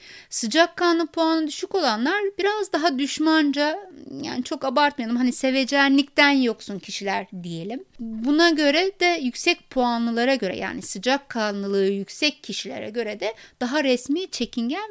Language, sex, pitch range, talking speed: Turkish, female, 235-300 Hz, 130 wpm